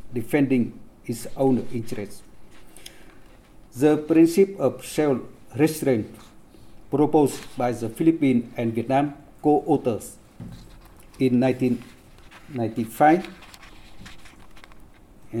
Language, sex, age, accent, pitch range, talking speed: English, male, 50-69, Indian, 110-140 Hz, 70 wpm